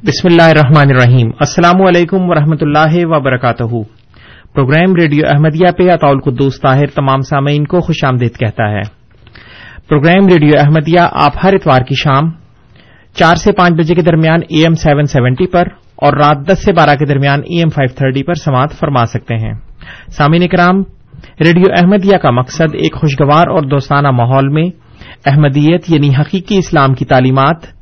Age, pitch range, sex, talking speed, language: 30-49, 135-170 Hz, male, 160 wpm, Urdu